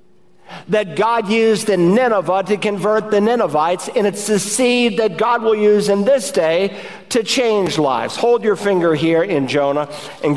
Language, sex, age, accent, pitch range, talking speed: English, male, 50-69, American, 145-195 Hz, 175 wpm